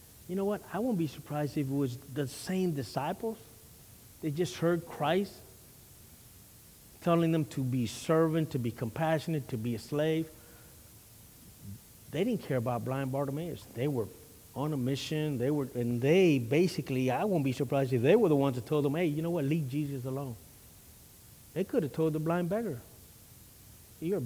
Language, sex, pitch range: English, male, 115-155 Hz